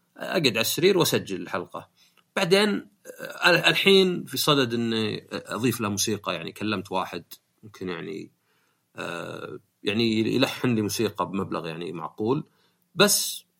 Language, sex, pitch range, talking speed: Arabic, male, 95-155 Hz, 120 wpm